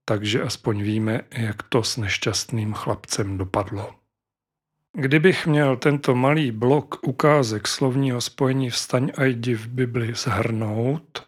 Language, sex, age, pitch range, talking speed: Czech, male, 40-59, 115-140 Hz, 120 wpm